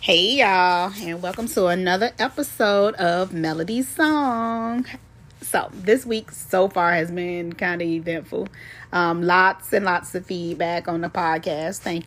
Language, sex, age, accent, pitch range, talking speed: English, female, 30-49, American, 175-220 Hz, 150 wpm